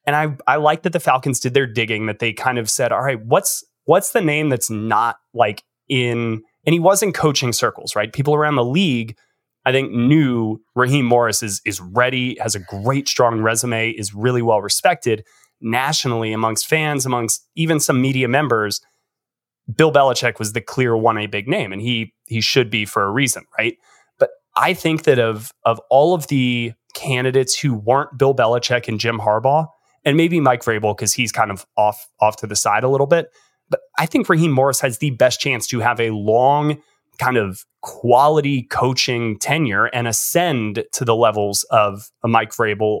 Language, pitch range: English, 110-145 Hz